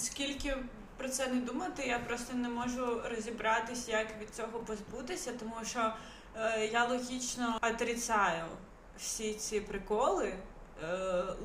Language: Ukrainian